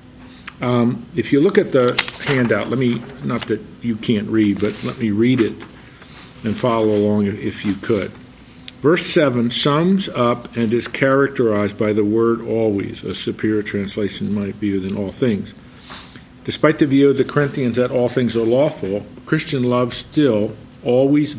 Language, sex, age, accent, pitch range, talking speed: English, male, 50-69, American, 105-130 Hz, 170 wpm